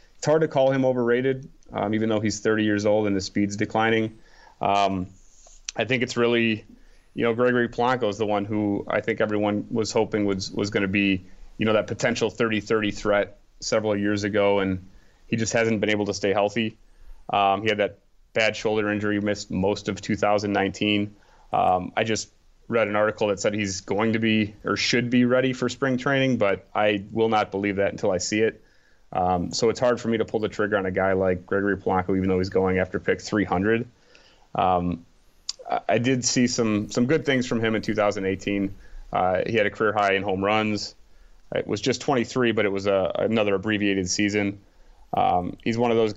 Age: 30-49